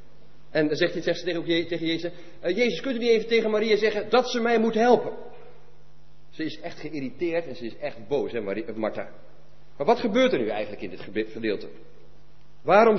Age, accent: 40-59, Dutch